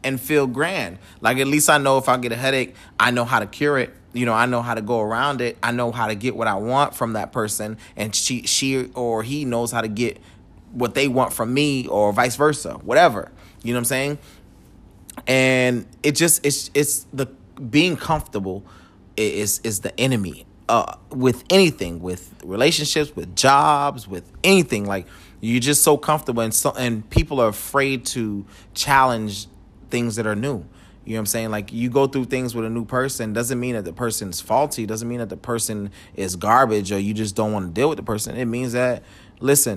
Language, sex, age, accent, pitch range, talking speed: English, male, 30-49, American, 110-140 Hz, 215 wpm